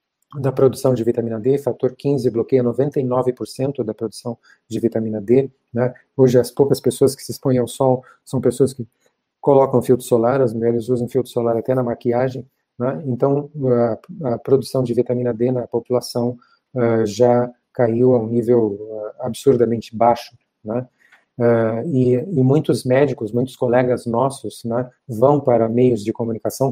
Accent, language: Brazilian, Portuguese